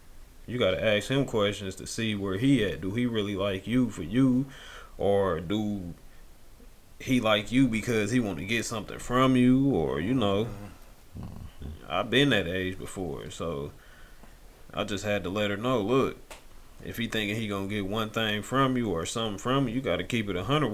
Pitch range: 100-120 Hz